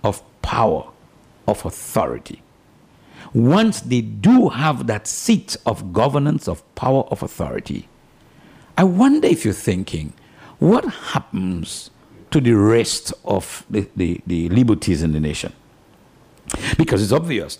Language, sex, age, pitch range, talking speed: English, male, 60-79, 90-125 Hz, 120 wpm